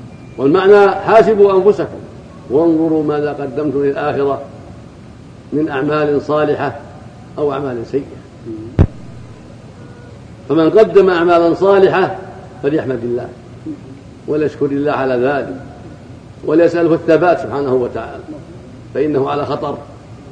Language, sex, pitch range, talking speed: Arabic, male, 125-175 Hz, 90 wpm